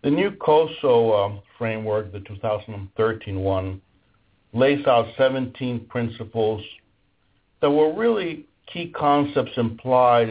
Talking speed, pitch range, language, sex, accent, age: 105 wpm, 95-120 Hz, English, male, American, 60-79